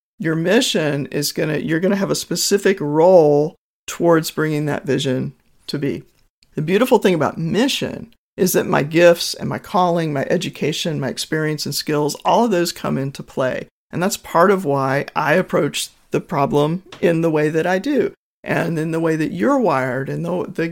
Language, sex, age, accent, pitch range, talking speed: English, male, 50-69, American, 150-205 Hz, 195 wpm